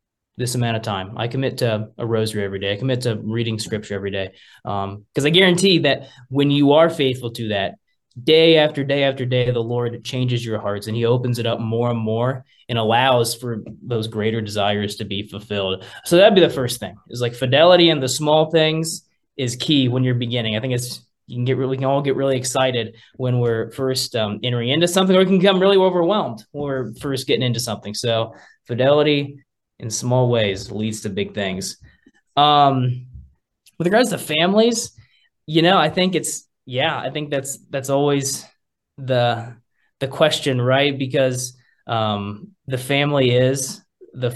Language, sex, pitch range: English, male, 115-140 Hz